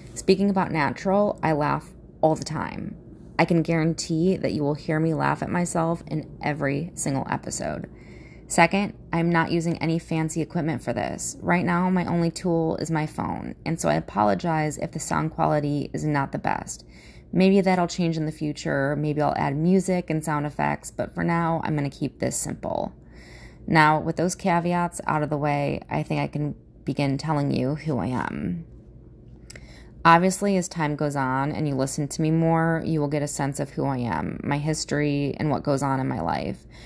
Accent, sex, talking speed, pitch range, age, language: American, female, 195 wpm, 145-165 Hz, 20-39, English